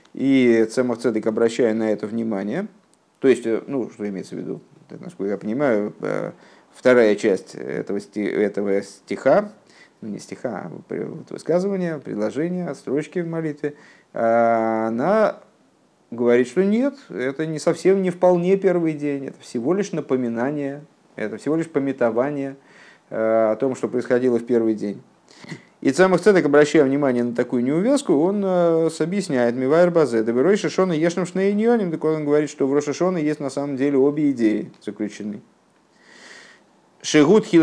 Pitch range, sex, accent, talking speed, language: 115-165 Hz, male, native, 140 wpm, Russian